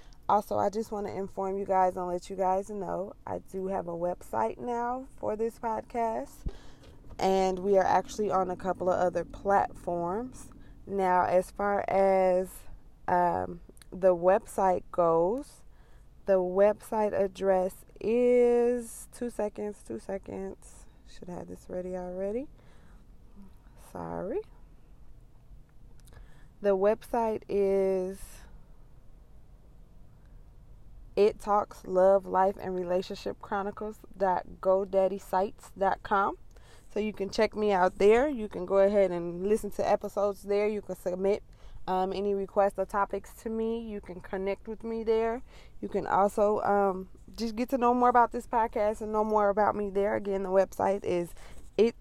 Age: 20-39